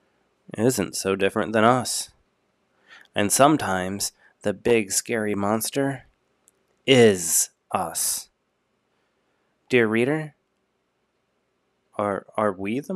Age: 30-49